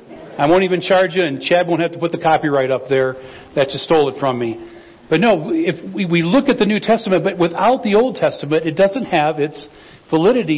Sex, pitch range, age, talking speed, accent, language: male, 155-195 Hz, 50-69, 225 wpm, American, English